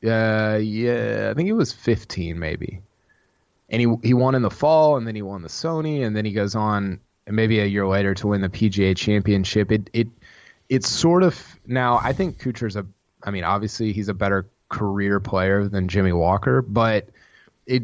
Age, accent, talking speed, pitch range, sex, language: 20-39, American, 195 wpm, 100-125 Hz, male, English